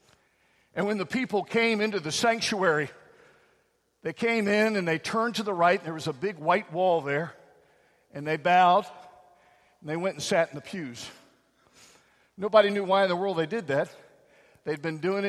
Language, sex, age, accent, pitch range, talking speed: English, male, 50-69, American, 170-225 Hz, 185 wpm